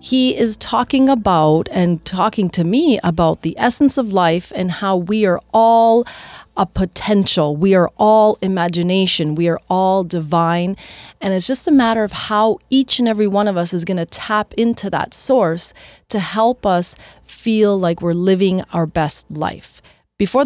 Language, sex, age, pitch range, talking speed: English, female, 30-49, 170-215 Hz, 175 wpm